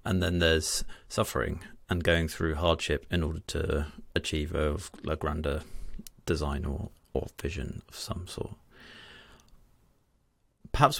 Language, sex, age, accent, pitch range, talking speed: English, male, 30-49, British, 85-105 Hz, 120 wpm